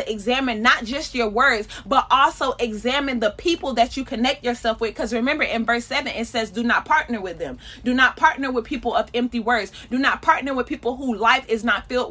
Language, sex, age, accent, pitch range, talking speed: English, female, 30-49, American, 230-270 Hz, 225 wpm